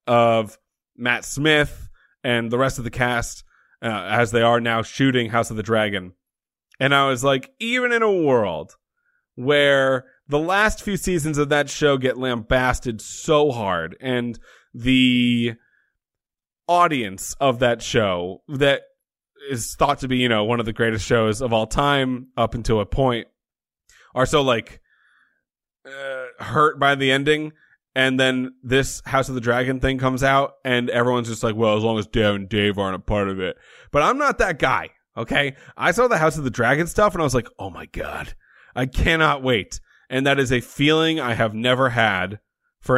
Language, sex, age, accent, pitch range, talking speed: English, male, 30-49, American, 115-145 Hz, 185 wpm